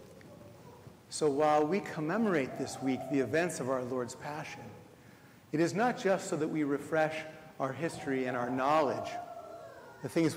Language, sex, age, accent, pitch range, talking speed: English, male, 40-59, American, 130-160 Hz, 155 wpm